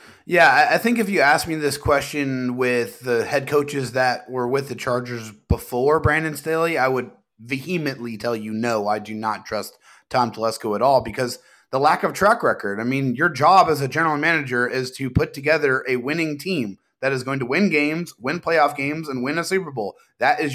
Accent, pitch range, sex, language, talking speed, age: American, 125-155 Hz, male, English, 210 wpm, 30-49